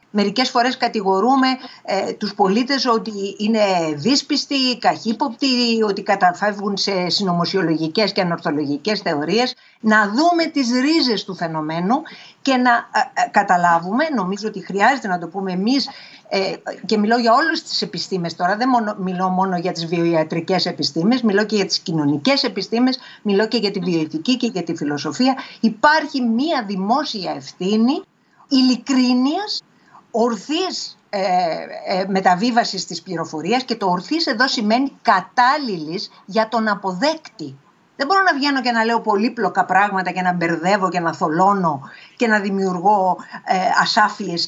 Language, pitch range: Greek, 180-245 Hz